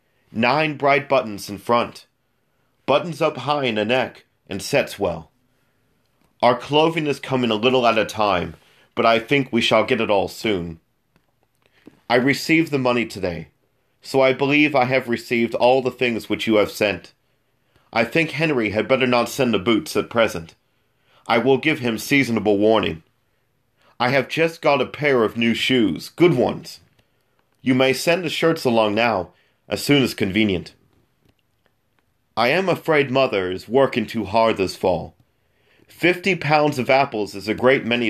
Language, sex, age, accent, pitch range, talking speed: English, male, 40-59, American, 105-135 Hz, 170 wpm